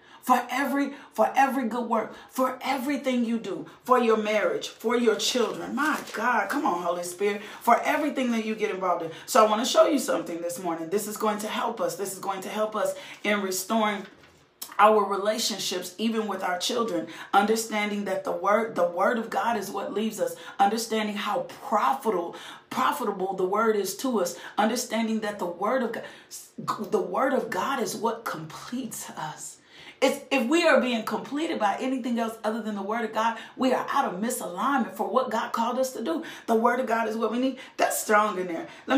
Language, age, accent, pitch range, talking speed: English, 40-59, American, 190-245 Hz, 200 wpm